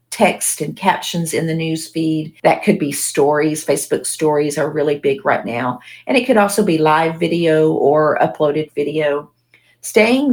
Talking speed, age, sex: 170 wpm, 40-59, female